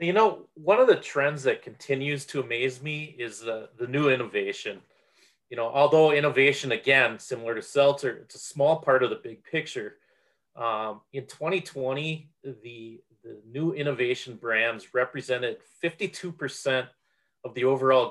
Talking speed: 150 wpm